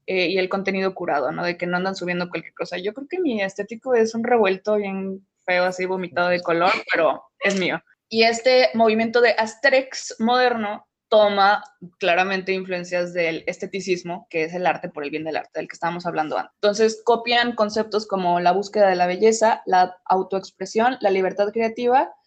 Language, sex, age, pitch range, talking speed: Spanish, female, 20-39, 190-235 Hz, 185 wpm